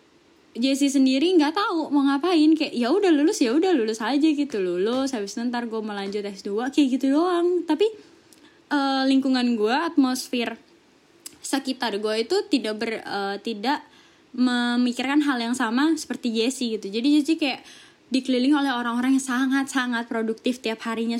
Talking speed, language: 155 wpm, Indonesian